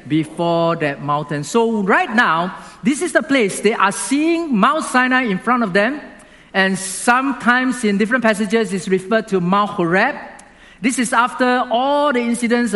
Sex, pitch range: male, 170-230 Hz